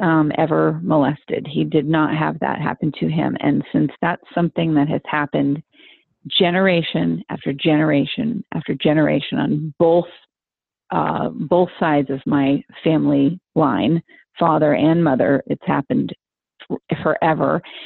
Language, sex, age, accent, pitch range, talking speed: English, female, 40-59, American, 150-170 Hz, 130 wpm